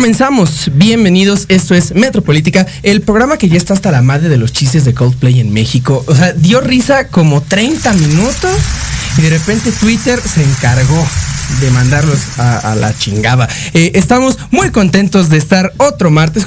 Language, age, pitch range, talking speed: Spanish, 30-49, 145-205 Hz, 170 wpm